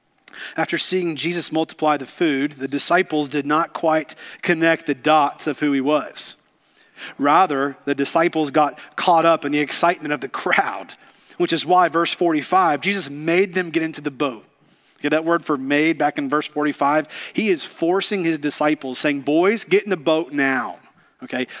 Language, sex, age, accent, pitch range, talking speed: English, male, 40-59, American, 150-195 Hz, 180 wpm